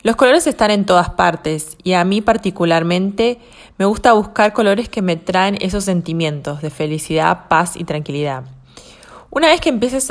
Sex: female